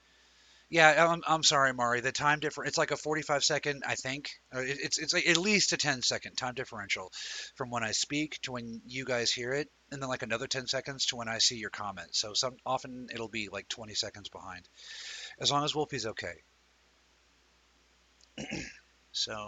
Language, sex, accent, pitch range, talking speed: English, male, American, 115-155 Hz, 190 wpm